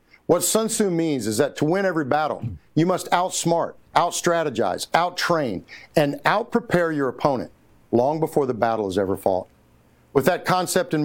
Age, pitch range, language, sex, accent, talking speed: 50-69, 120-170 Hz, English, male, American, 165 wpm